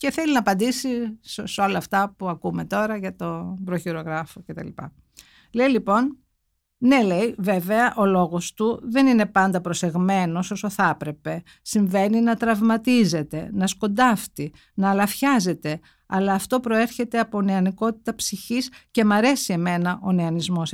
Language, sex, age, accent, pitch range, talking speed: Greek, female, 50-69, native, 170-230 Hz, 150 wpm